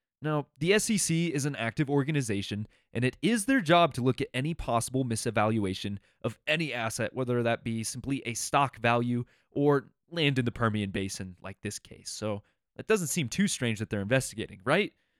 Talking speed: 185 wpm